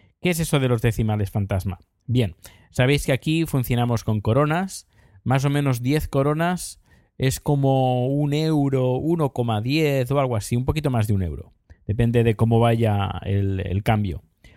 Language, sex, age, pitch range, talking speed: Spanish, male, 20-39, 110-145 Hz, 165 wpm